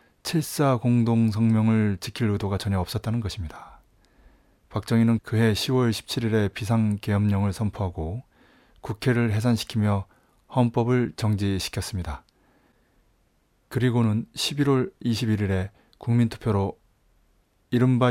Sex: male